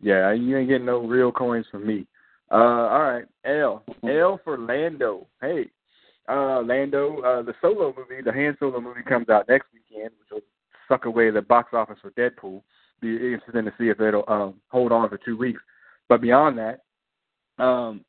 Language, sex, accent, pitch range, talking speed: English, male, American, 110-130 Hz, 190 wpm